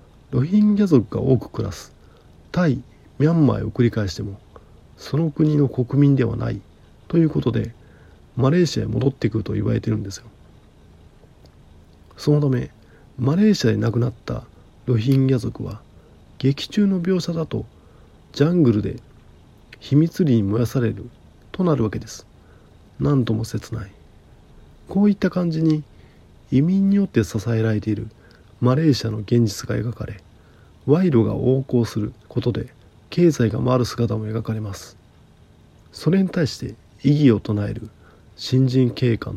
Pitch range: 105-140 Hz